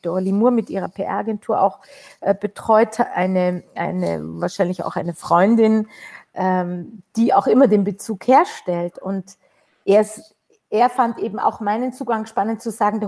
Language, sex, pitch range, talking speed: German, female, 195-245 Hz, 155 wpm